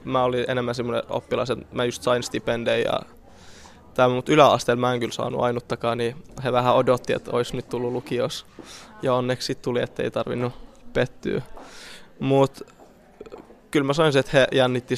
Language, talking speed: Finnish, 170 wpm